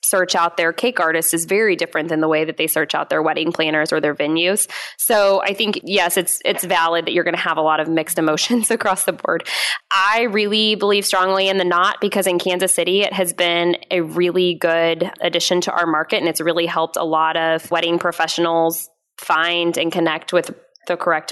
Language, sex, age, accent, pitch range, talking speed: English, female, 10-29, American, 165-200 Hz, 215 wpm